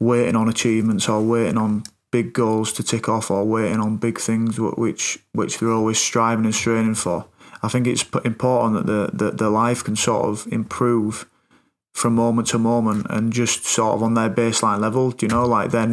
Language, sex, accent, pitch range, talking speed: English, male, British, 110-120 Hz, 205 wpm